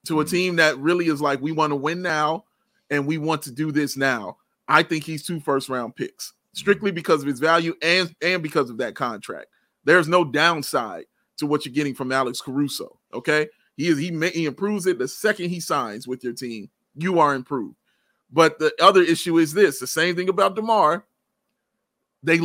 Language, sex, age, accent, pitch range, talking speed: English, male, 30-49, American, 145-190 Hz, 205 wpm